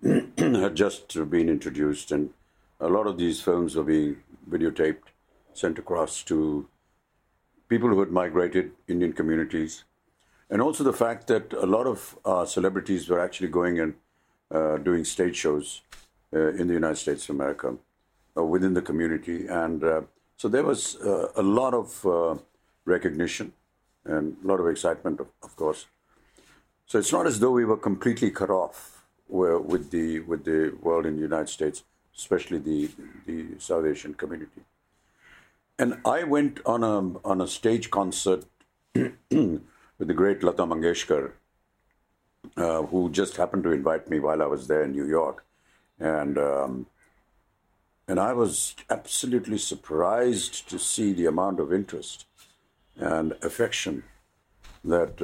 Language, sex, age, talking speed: English, male, 60-79, 150 wpm